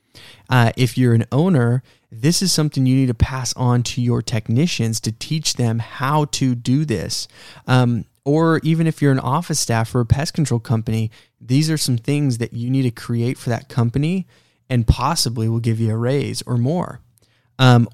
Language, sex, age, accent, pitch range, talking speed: English, male, 20-39, American, 120-140 Hz, 195 wpm